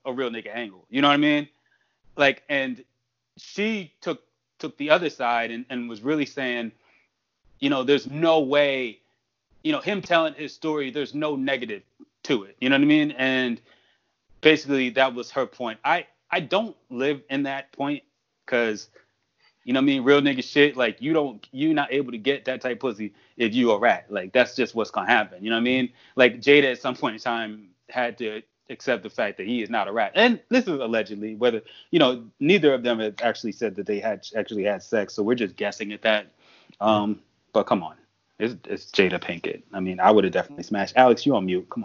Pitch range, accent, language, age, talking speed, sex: 120-165 Hz, American, English, 30-49, 220 wpm, male